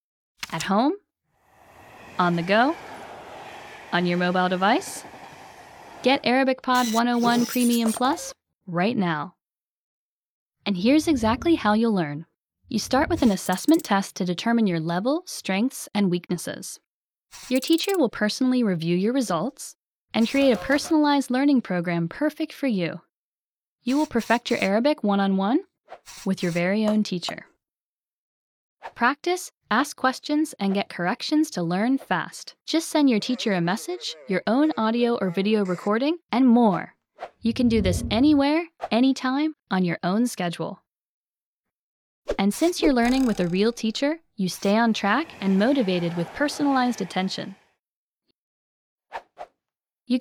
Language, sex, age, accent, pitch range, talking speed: English, female, 10-29, American, 195-275 Hz, 135 wpm